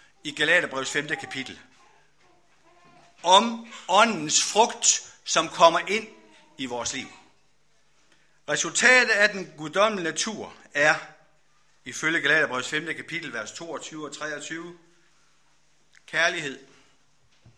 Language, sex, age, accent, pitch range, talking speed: Danish, male, 60-79, native, 150-200 Hz, 95 wpm